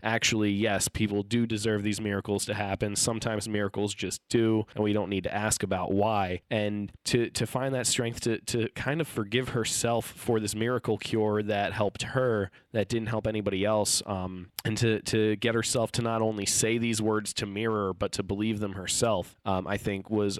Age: 20-39